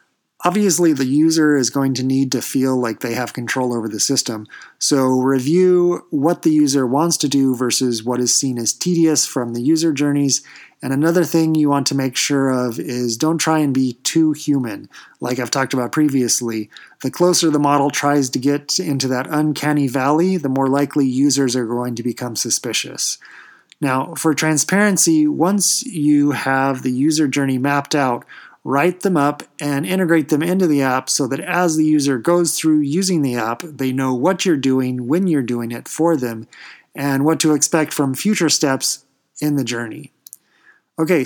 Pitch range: 130-160 Hz